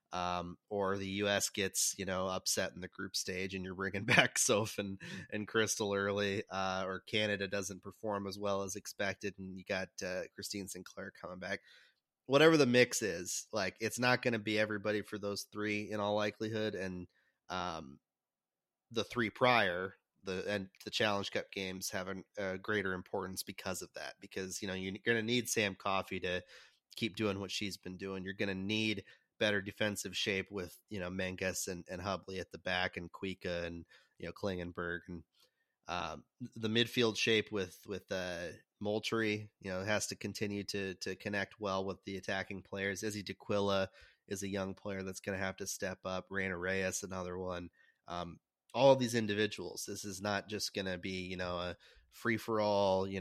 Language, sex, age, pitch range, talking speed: English, male, 30-49, 95-105 Hz, 190 wpm